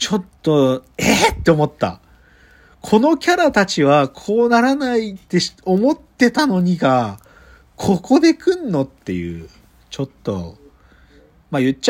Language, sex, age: Japanese, male, 40-59